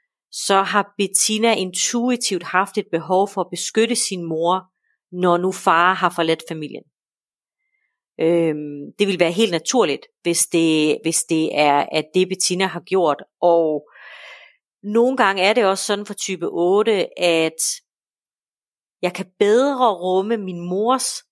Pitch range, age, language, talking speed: 170-210 Hz, 40-59, Danish, 140 wpm